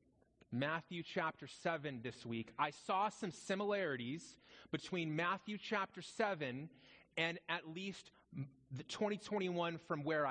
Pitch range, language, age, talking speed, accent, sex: 165-215 Hz, English, 30-49, 115 wpm, American, male